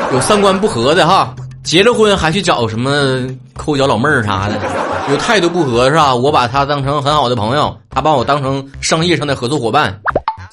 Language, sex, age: Chinese, male, 20-39